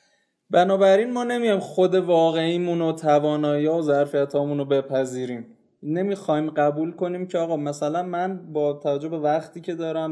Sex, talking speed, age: male, 155 wpm, 20-39